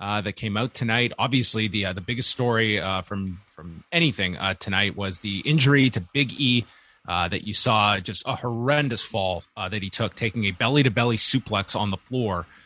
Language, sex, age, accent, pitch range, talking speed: English, male, 30-49, American, 100-130 Hz, 210 wpm